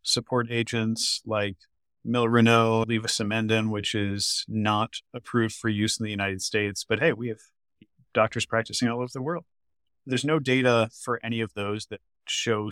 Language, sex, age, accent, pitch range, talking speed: English, male, 30-49, American, 100-120 Hz, 160 wpm